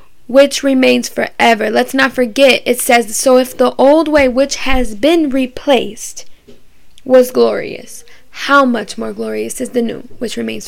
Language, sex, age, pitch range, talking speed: English, female, 10-29, 225-265 Hz, 155 wpm